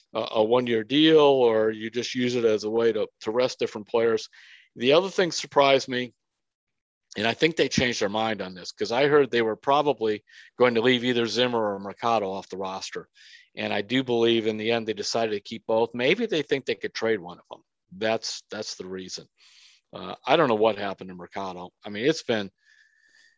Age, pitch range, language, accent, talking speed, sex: 50-69, 105-130 Hz, English, American, 215 wpm, male